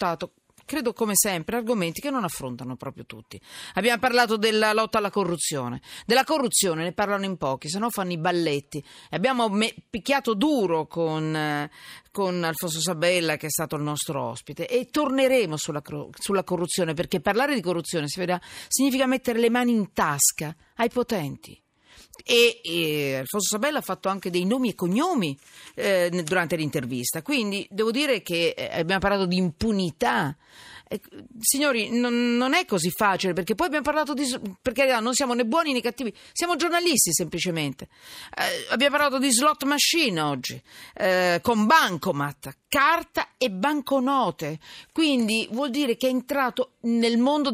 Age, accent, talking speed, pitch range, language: 40-59, native, 155 wpm, 170-255 Hz, Italian